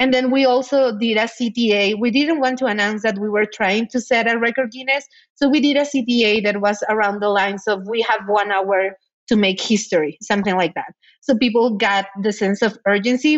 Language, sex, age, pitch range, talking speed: English, female, 30-49, 195-240 Hz, 220 wpm